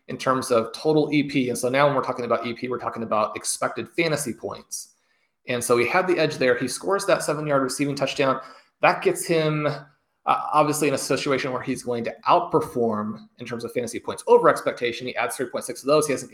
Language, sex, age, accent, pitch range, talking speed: English, male, 30-49, American, 120-150 Hz, 225 wpm